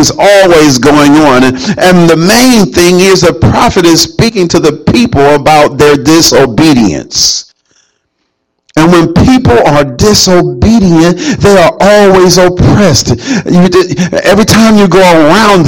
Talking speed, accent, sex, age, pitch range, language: 125 wpm, American, male, 50-69, 130-185 Hz, English